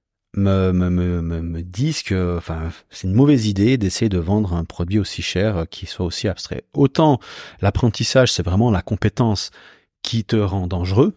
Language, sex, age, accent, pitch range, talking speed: French, male, 30-49, French, 95-130 Hz, 170 wpm